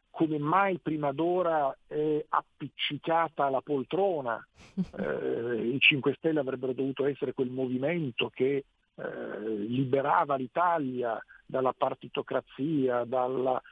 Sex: male